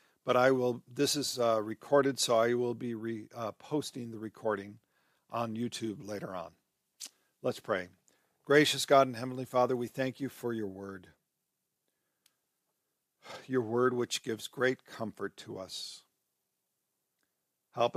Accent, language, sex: American, English, male